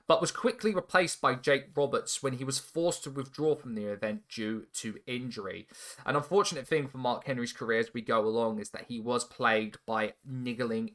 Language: English